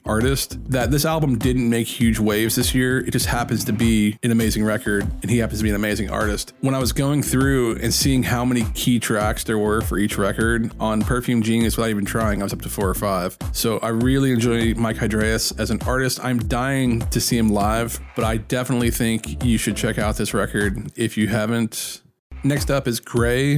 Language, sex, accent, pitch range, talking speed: English, male, American, 110-125 Hz, 220 wpm